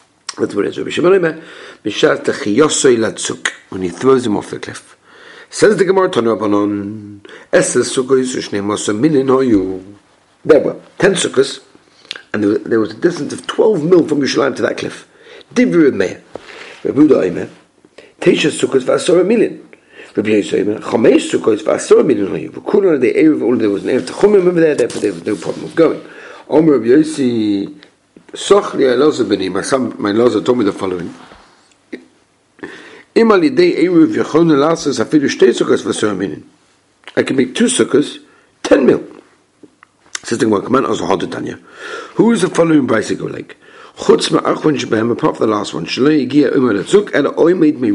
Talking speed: 100 wpm